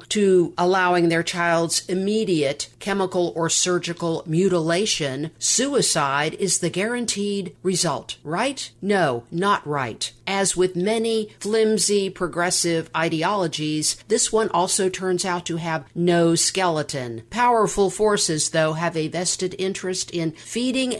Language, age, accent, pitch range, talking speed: English, 50-69, American, 165-200 Hz, 120 wpm